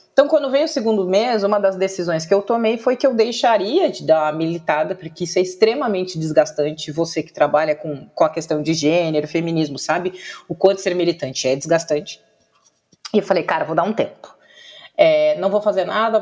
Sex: female